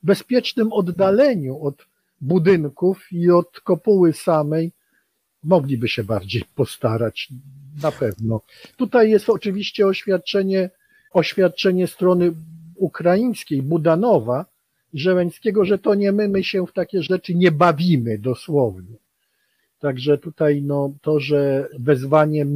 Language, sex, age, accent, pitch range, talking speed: Polish, male, 50-69, native, 140-175 Hz, 110 wpm